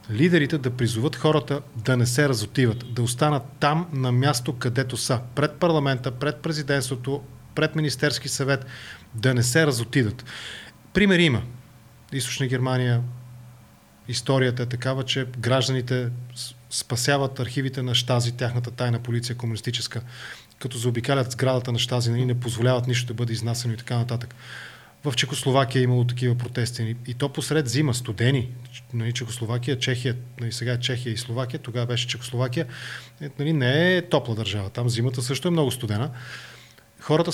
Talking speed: 145 wpm